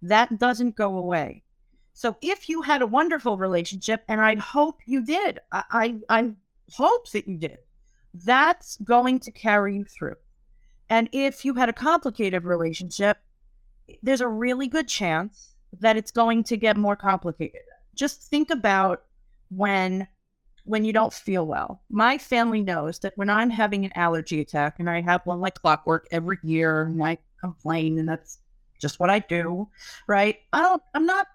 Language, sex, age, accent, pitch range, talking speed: English, female, 40-59, American, 190-285 Hz, 170 wpm